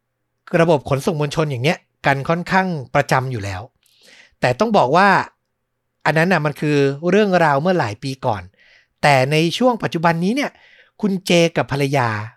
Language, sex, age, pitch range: Thai, male, 60-79, 135-190 Hz